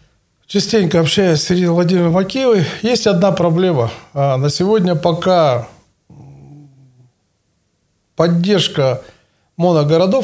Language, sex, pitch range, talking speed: Russian, male, 145-195 Hz, 80 wpm